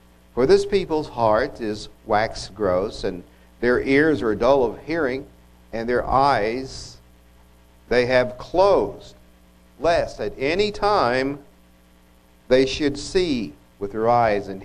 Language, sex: English, male